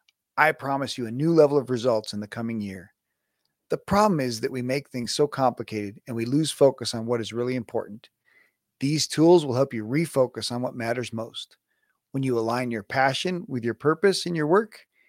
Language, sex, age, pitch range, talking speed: English, male, 40-59, 120-160 Hz, 205 wpm